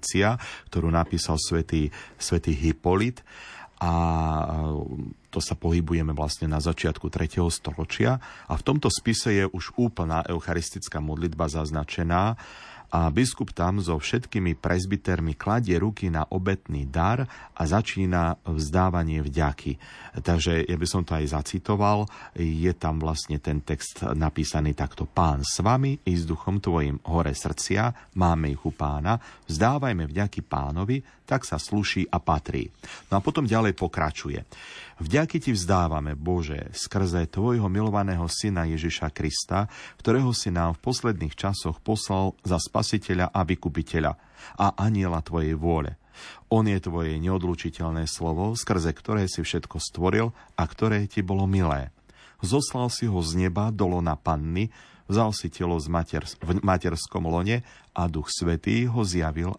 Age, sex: 40-59, male